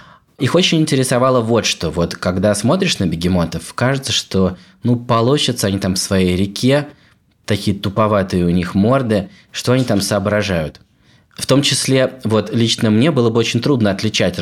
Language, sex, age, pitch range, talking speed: Russian, male, 20-39, 90-125 Hz, 160 wpm